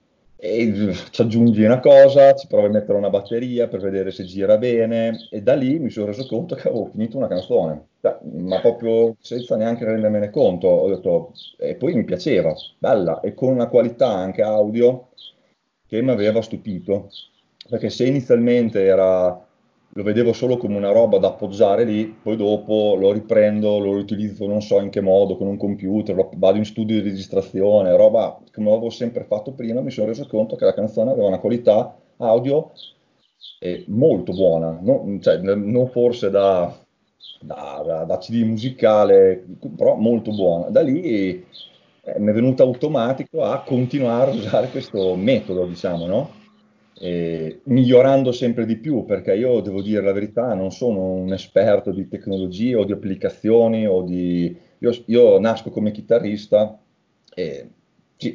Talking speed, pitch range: 160 wpm, 95-115 Hz